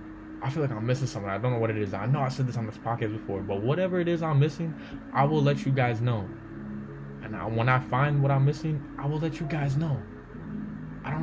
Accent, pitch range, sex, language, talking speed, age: American, 110-145 Hz, male, English, 255 wpm, 20-39